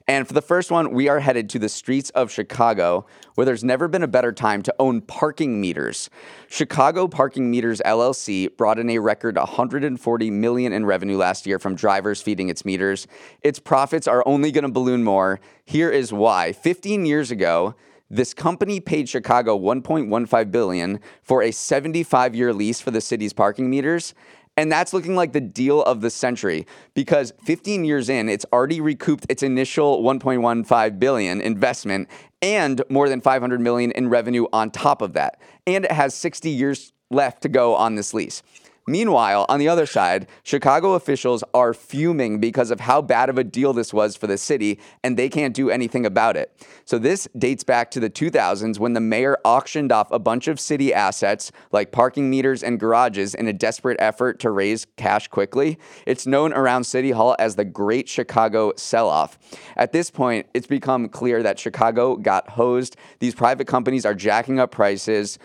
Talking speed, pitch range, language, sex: 185 wpm, 110-140 Hz, English, male